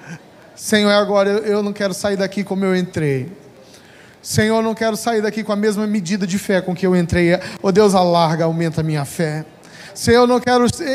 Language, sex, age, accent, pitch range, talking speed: Portuguese, male, 20-39, Brazilian, 170-220 Hz, 205 wpm